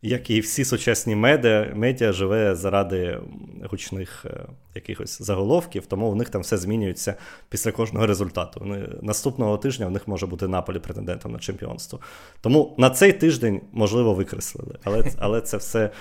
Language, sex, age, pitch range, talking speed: Ukrainian, male, 20-39, 100-120 Hz, 155 wpm